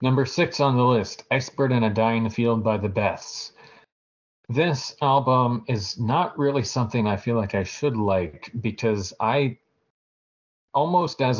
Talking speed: 155 wpm